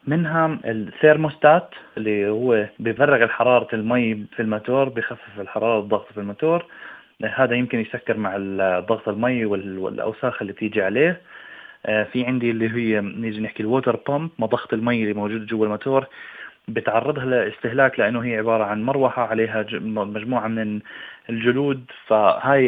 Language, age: Arabic, 20-39